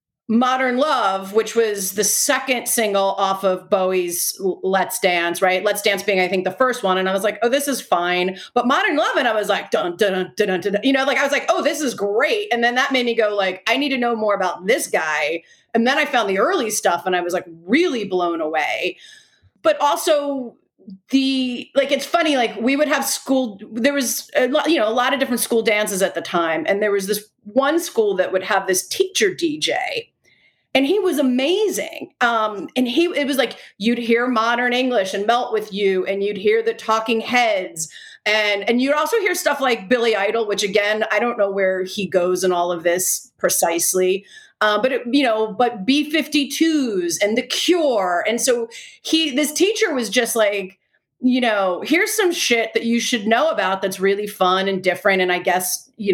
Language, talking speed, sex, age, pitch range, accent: English, 215 wpm, female, 30-49, 190-275 Hz, American